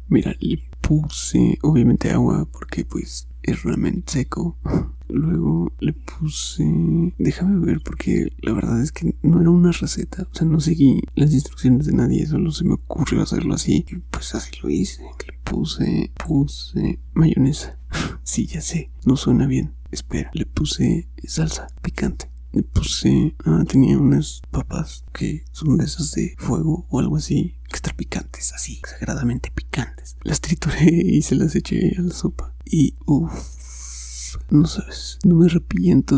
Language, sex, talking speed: Spanish, male, 155 wpm